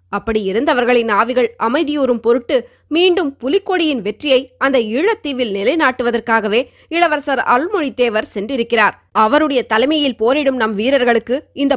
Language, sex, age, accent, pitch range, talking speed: Tamil, female, 20-39, native, 225-285 Hz, 105 wpm